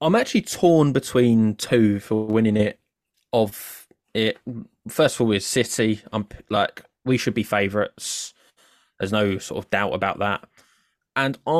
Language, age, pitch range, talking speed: English, 20-39, 105-120 Hz, 150 wpm